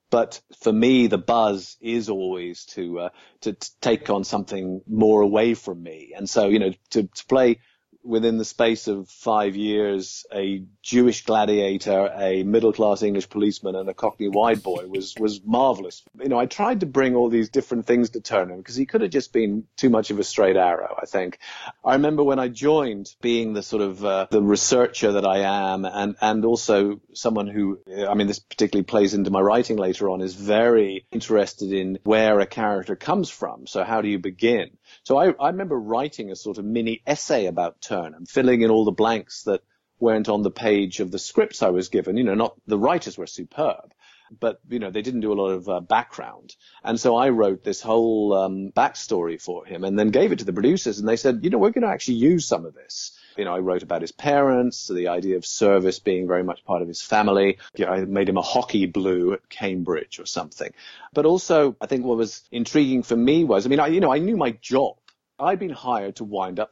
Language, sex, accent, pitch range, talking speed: English, male, British, 95-115 Hz, 225 wpm